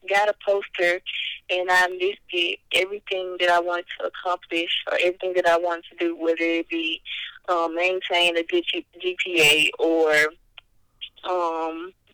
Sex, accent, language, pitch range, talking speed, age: female, American, English, 170-200 Hz, 145 wpm, 20-39